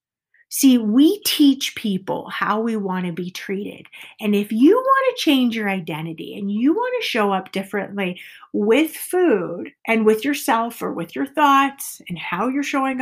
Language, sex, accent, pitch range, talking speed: English, female, American, 210-290 Hz, 160 wpm